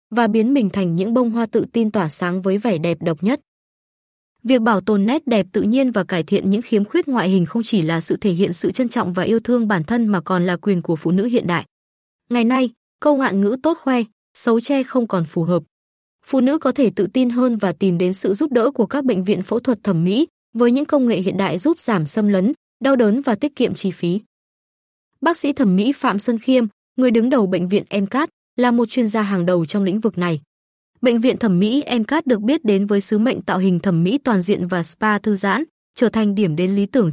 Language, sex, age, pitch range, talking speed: Vietnamese, female, 20-39, 195-250 Hz, 250 wpm